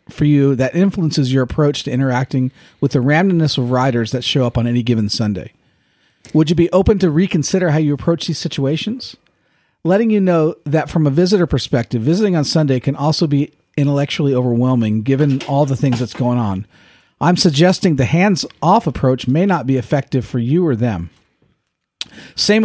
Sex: male